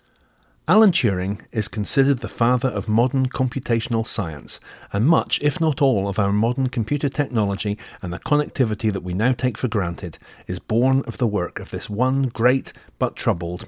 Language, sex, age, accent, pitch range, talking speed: English, male, 40-59, British, 100-135 Hz, 175 wpm